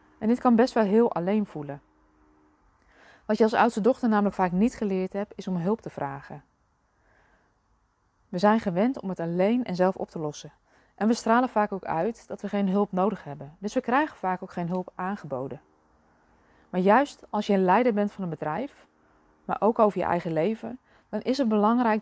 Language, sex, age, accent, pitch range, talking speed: Dutch, female, 20-39, Dutch, 170-220 Hz, 200 wpm